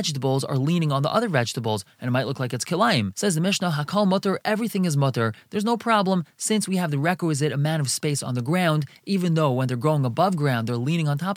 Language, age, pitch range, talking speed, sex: English, 20-39, 140-185 Hz, 240 wpm, male